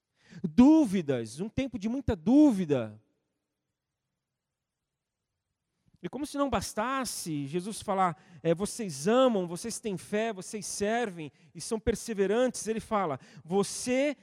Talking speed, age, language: 115 wpm, 40-59, Portuguese